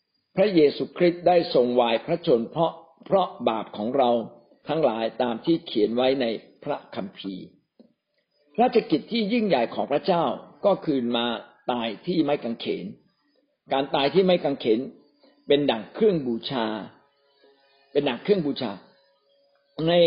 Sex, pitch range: male, 135-180 Hz